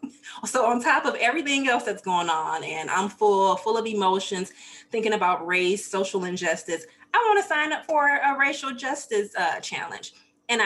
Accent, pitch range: American, 175-220 Hz